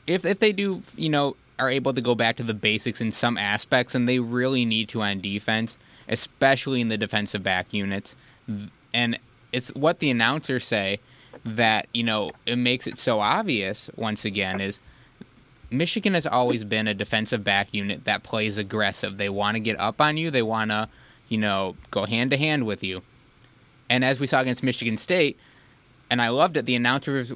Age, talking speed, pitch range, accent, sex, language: 20-39, 195 wpm, 110-135 Hz, American, male, English